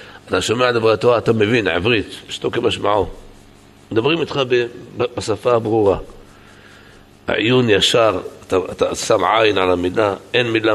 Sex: male